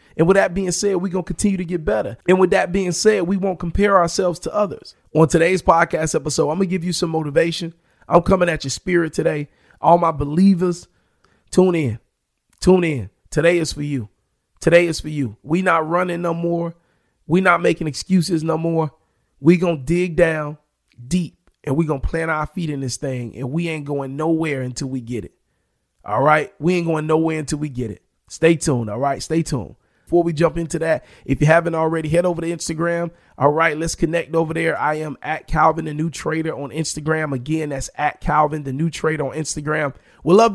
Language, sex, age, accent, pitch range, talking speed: English, male, 30-49, American, 150-175 Hz, 215 wpm